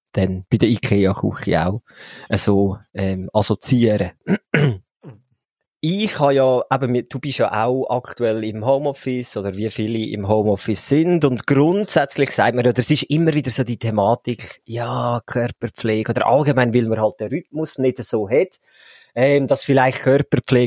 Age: 20-39